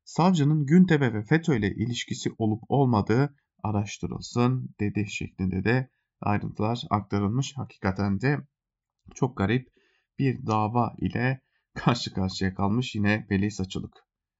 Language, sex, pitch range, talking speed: German, male, 100-135 Hz, 115 wpm